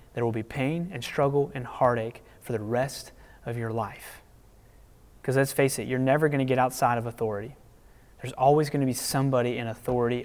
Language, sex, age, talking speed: English, male, 30-49, 200 wpm